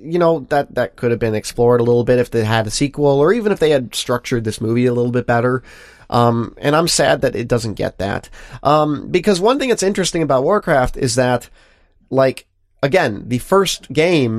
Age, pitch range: 30-49, 115-155 Hz